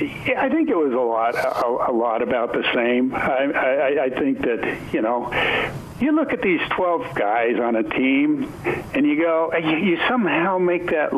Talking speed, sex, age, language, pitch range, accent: 200 wpm, male, 60-79, English, 130-205 Hz, American